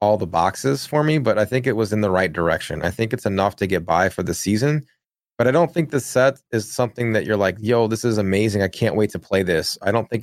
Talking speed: 280 wpm